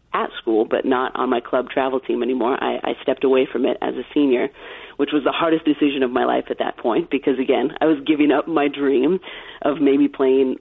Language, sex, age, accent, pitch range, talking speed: English, female, 30-49, American, 130-150 Hz, 230 wpm